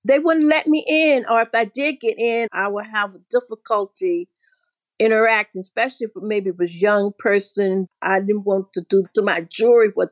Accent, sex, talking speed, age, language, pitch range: American, female, 195 wpm, 50-69, English, 200-255 Hz